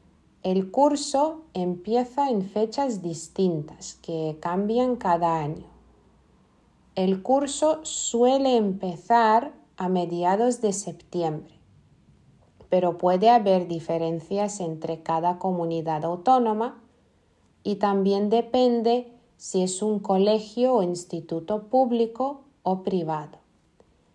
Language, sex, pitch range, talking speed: Spanish, female, 170-225 Hz, 95 wpm